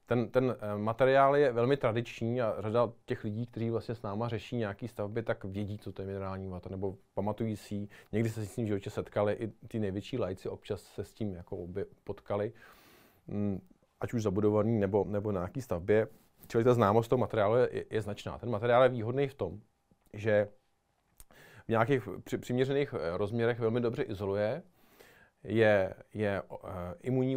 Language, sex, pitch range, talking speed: Czech, male, 100-115 Hz, 175 wpm